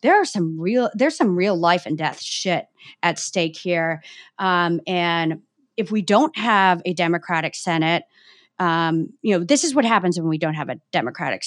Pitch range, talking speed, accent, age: 165-195 Hz, 190 wpm, American, 30-49